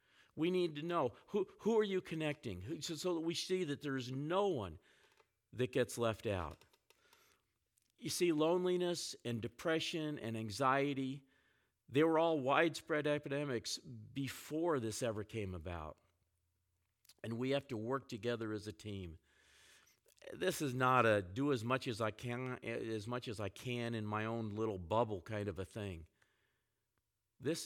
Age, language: 50-69, English